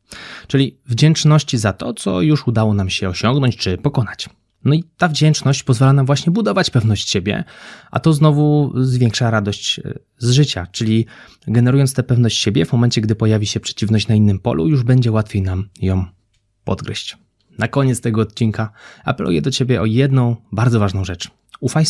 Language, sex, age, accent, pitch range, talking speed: Polish, male, 20-39, native, 100-130 Hz, 170 wpm